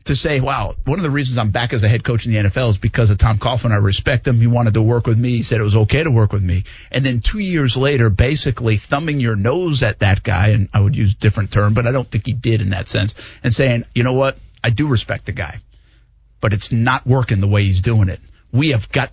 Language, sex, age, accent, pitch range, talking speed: English, male, 50-69, American, 110-145 Hz, 280 wpm